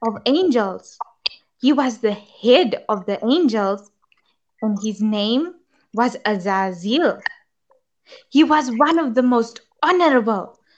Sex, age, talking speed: female, 20-39, 115 wpm